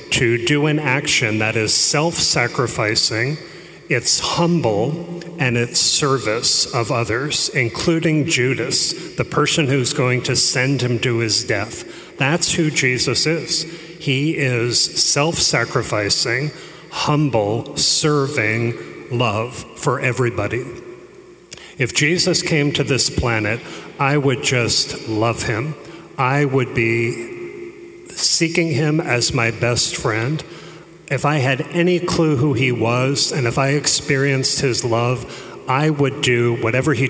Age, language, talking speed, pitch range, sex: 40-59, English, 125 wpm, 120-155 Hz, male